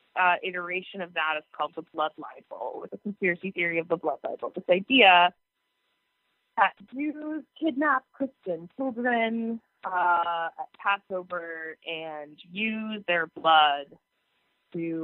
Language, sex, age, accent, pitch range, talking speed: English, female, 20-39, American, 165-200 Hz, 130 wpm